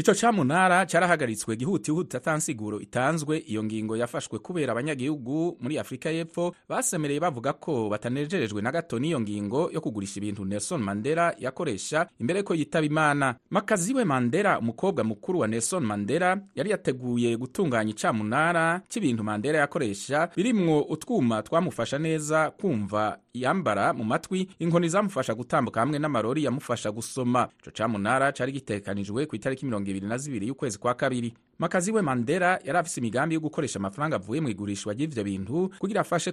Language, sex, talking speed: English, male, 145 wpm